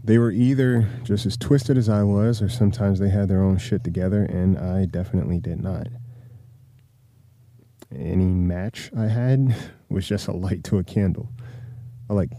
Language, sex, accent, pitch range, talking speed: English, male, American, 95-120 Hz, 170 wpm